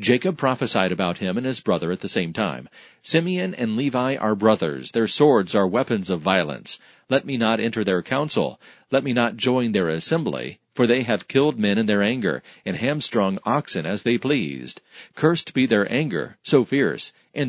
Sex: male